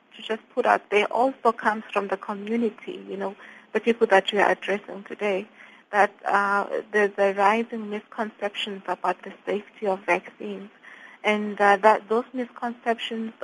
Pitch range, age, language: 200-220 Hz, 20-39, English